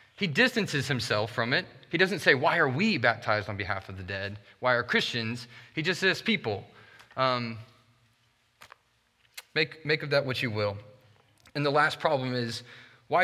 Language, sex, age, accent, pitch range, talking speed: English, male, 30-49, American, 120-160 Hz, 170 wpm